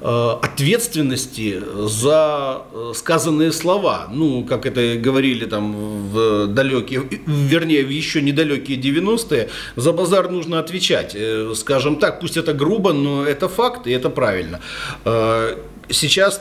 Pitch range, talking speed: 115-160 Hz, 115 wpm